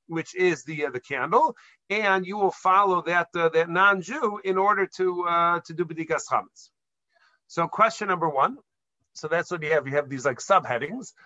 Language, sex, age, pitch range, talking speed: English, male, 40-59, 170-215 Hz, 190 wpm